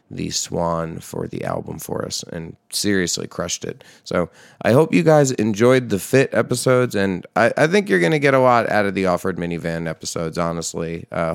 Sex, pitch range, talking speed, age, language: male, 85-115 Hz, 200 wpm, 30-49, English